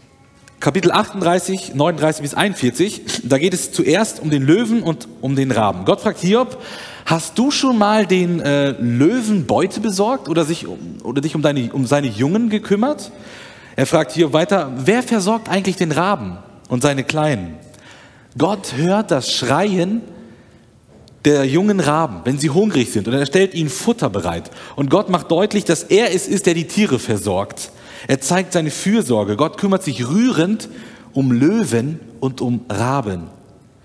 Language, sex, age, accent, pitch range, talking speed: German, male, 40-59, German, 125-195 Hz, 165 wpm